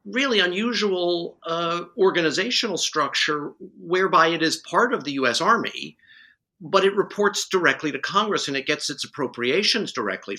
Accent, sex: American, male